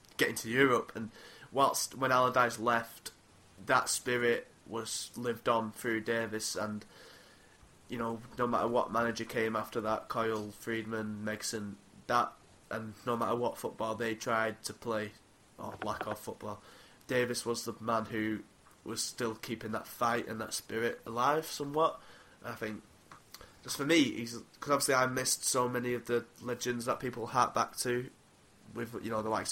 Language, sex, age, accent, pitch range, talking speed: English, male, 20-39, British, 110-120 Hz, 165 wpm